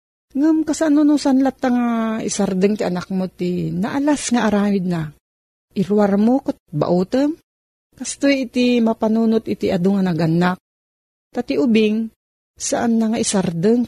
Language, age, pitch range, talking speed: Filipino, 40-59, 175-235 Hz, 140 wpm